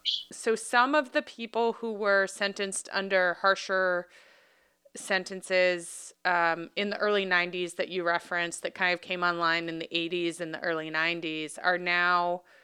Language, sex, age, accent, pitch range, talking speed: English, female, 30-49, American, 175-205 Hz, 155 wpm